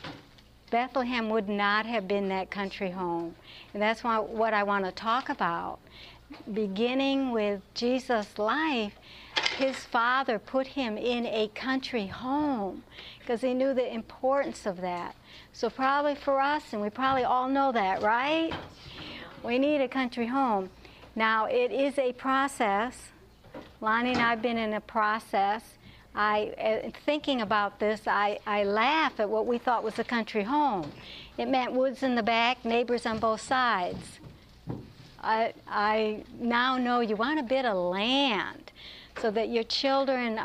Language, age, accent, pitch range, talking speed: English, 60-79, American, 215-260 Hz, 155 wpm